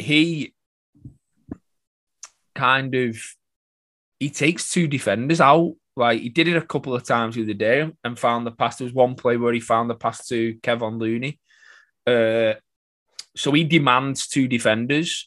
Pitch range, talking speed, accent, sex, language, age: 110-140 Hz, 160 wpm, British, male, English, 20-39